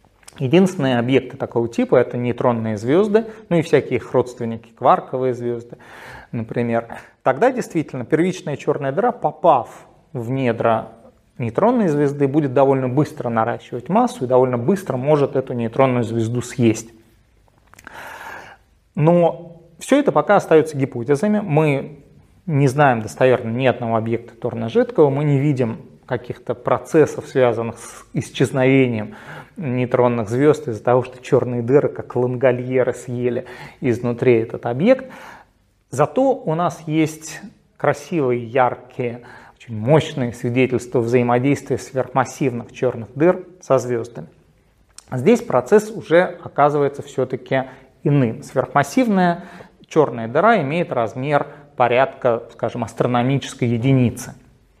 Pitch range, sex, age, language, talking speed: 120-155 Hz, male, 30-49, Russian, 115 wpm